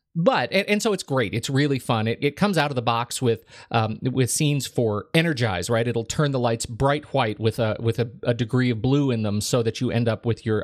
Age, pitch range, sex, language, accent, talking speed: 40-59, 115-145 Hz, male, English, American, 260 wpm